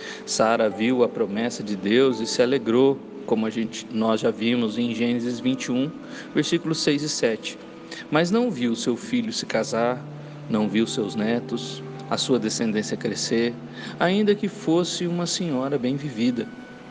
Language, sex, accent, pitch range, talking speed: Portuguese, male, Brazilian, 120-185 Hz, 150 wpm